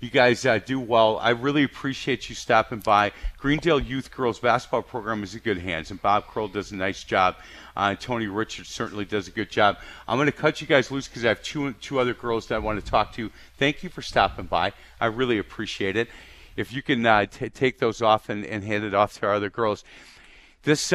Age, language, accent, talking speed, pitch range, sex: 40-59, English, American, 235 wpm, 110-145 Hz, male